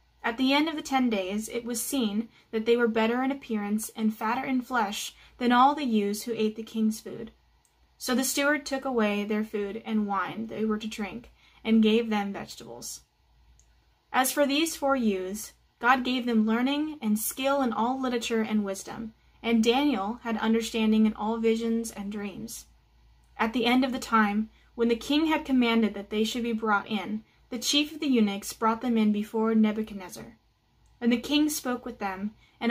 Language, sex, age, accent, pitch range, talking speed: English, female, 20-39, American, 210-245 Hz, 195 wpm